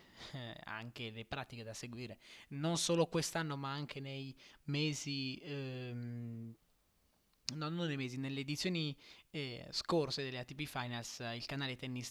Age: 20-39